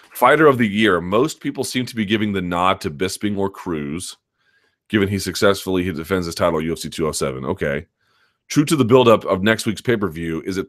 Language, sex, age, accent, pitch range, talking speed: English, male, 30-49, American, 85-110 Hz, 200 wpm